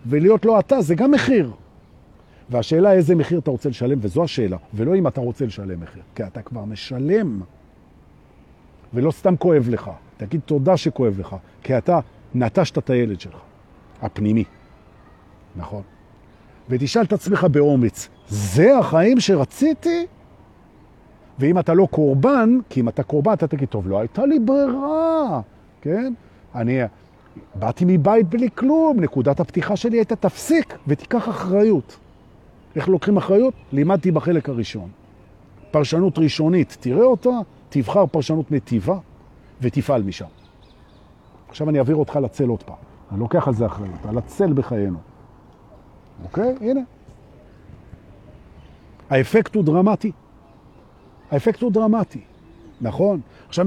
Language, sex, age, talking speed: Hebrew, male, 50-69, 105 wpm